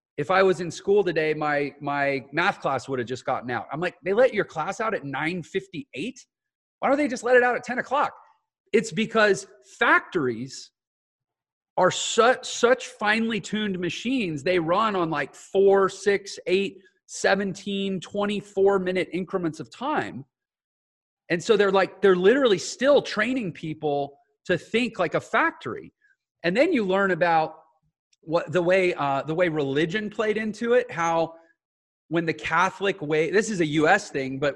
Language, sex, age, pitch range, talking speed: English, male, 40-59, 150-200 Hz, 170 wpm